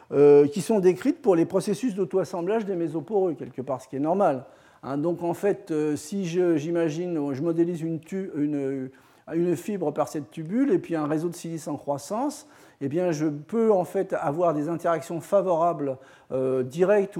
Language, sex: French, male